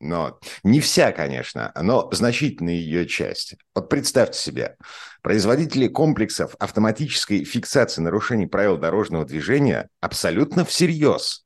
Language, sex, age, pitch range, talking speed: Russian, male, 50-69, 100-150 Hz, 110 wpm